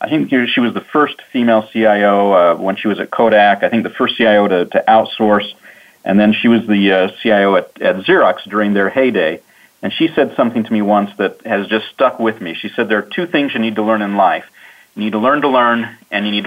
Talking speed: 250 wpm